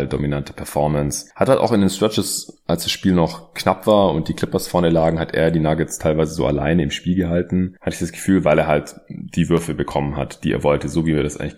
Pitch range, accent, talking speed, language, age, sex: 80-95 Hz, German, 250 wpm, German, 30-49, male